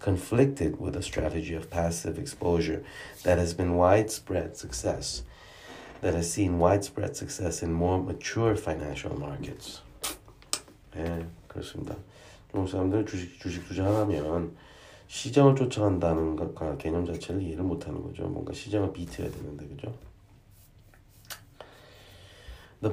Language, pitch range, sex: Korean, 85-105 Hz, male